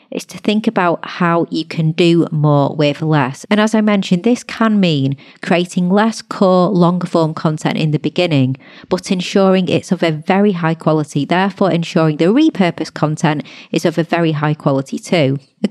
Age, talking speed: 30-49, 185 wpm